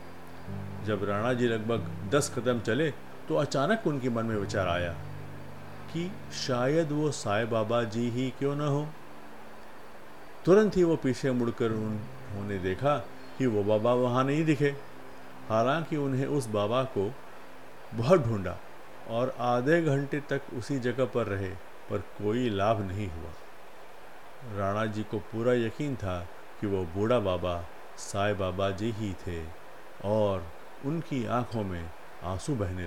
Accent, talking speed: native, 140 wpm